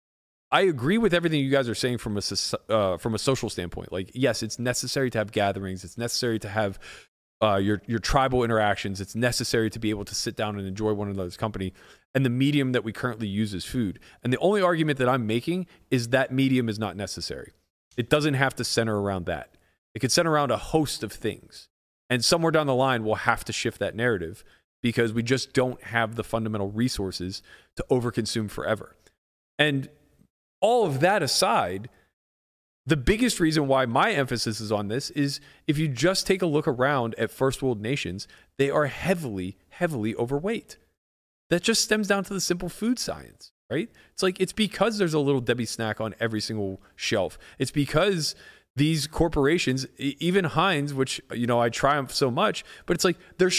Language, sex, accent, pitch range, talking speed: English, male, American, 110-150 Hz, 195 wpm